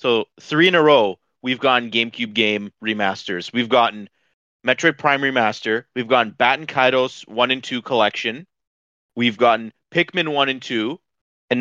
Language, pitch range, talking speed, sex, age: English, 110-130 Hz, 160 wpm, male, 30-49